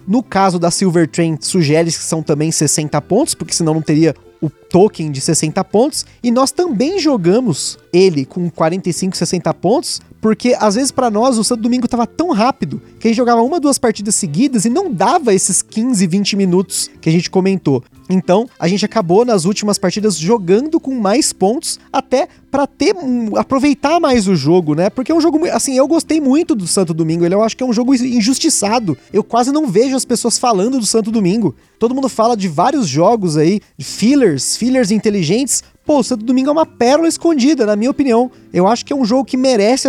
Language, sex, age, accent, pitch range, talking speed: Portuguese, male, 20-39, Brazilian, 175-255 Hz, 200 wpm